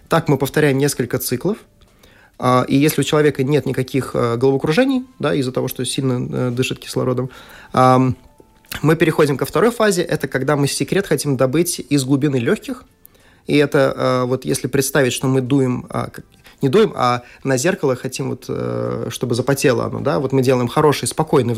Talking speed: 160 wpm